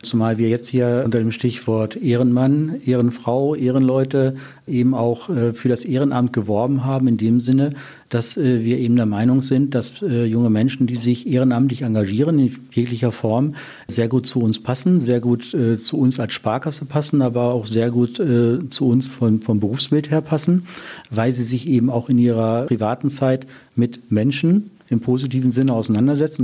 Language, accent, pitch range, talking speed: German, German, 120-140 Hz, 170 wpm